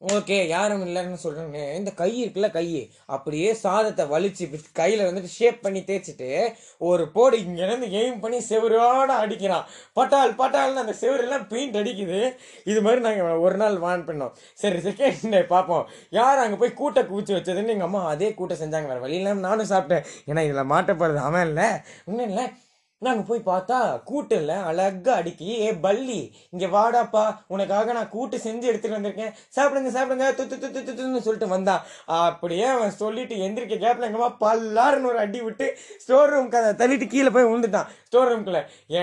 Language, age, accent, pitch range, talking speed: Tamil, 20-39, native, 185-245 Hz, 160 wpm